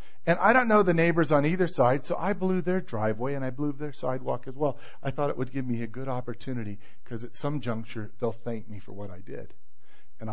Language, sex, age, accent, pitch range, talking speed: English, male, 50-69, American, 130-200 Hz, 245 wpm